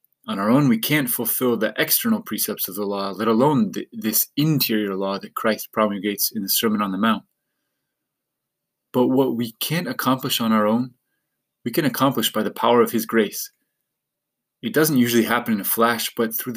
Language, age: English, 20-39